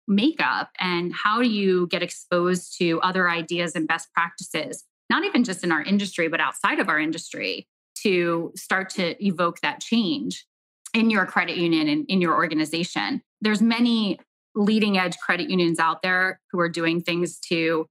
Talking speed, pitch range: 170 wpm, 175-210 Hz